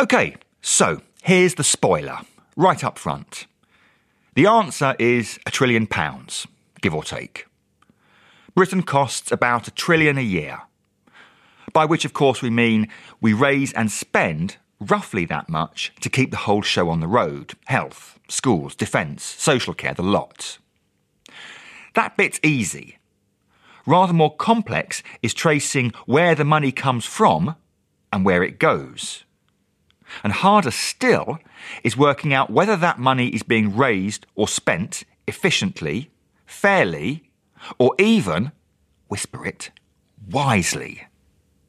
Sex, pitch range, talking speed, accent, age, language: male, 115-160 Hz, 130 wpm, British, 40-59, English